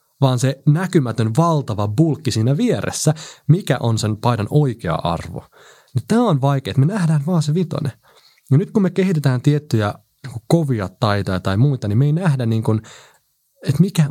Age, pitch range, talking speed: 30-49, 110-155 Hz, 170 wpm